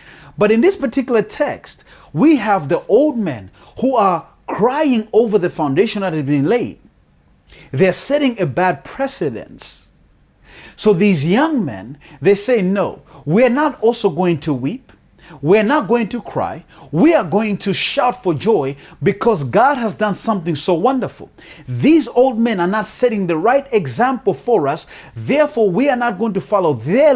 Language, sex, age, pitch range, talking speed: English, male, 40-59, 170-245 Hz, 170 wpm